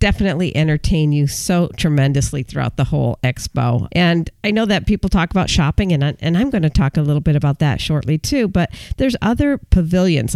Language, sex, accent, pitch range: English, female, American, 145-180 Hz